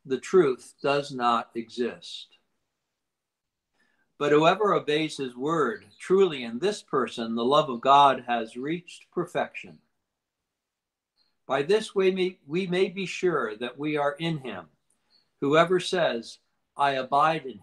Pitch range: 120-165 Hz